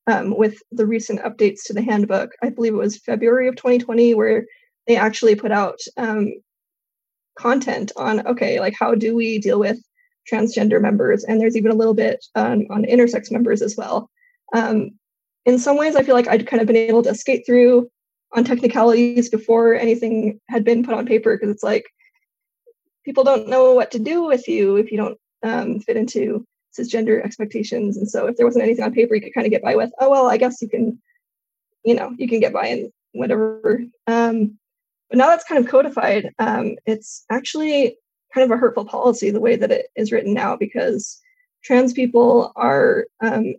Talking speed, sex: 195 wpm, female